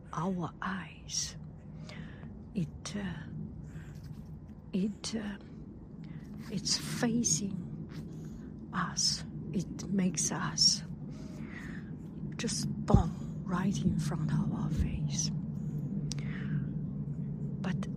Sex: female